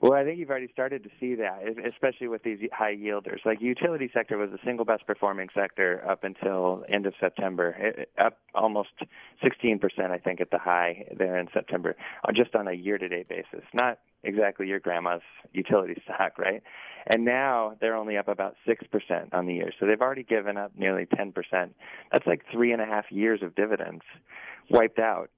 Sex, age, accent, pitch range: male, 20-39, American, 90-110 Hz